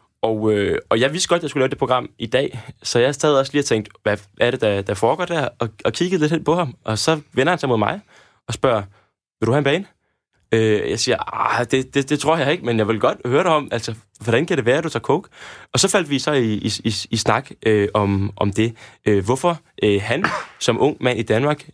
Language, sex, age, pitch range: Danish, male, 20-39, 105-140 Hz